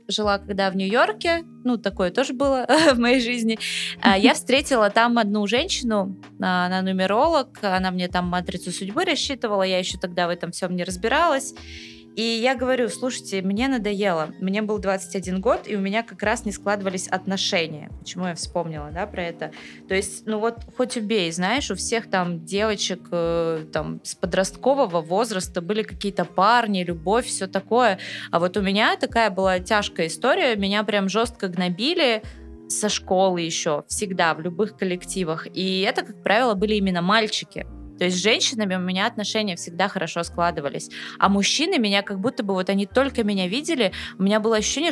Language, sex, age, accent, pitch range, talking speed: Russian, female, 20-39, native, 185-225 Hz, 170 wpm